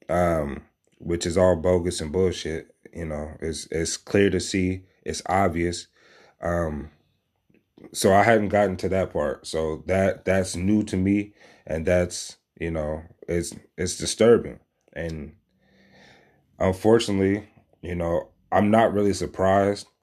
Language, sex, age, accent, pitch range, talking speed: English, male, 30-49, American, 90-115 Hz, 135 wpm